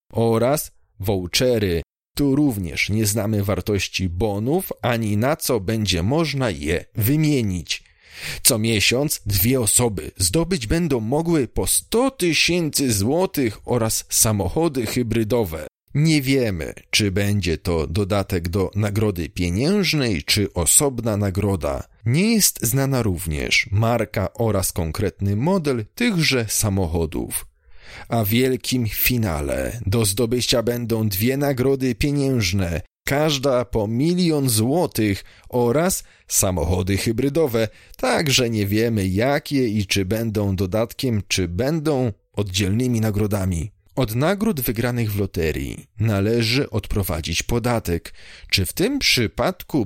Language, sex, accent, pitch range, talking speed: Polish, male, native, 95-130 Hz, 110 wpm